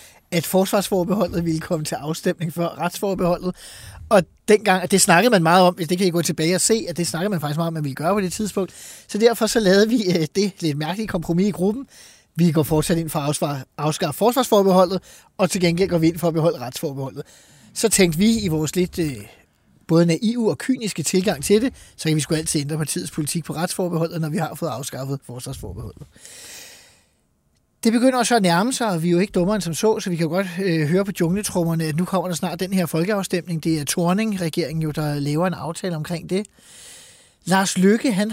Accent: native